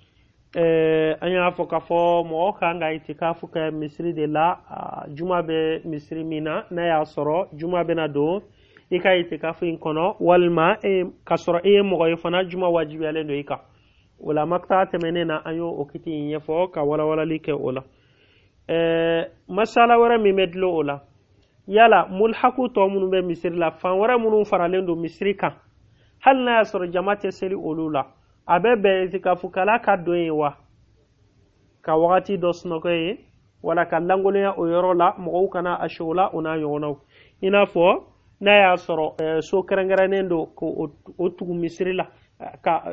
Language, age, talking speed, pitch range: Finnish, 30-49, 130 wpm, 155-185 Hz